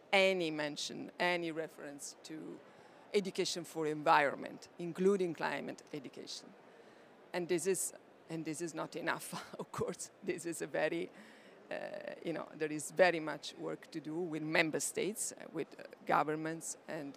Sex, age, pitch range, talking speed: female, 50-69, 160-195 Hz, 150 wpm